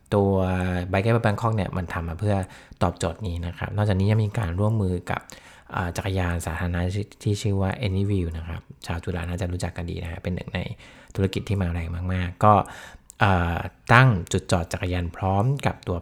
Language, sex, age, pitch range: Thai, male, 20-39, 90-105 Hz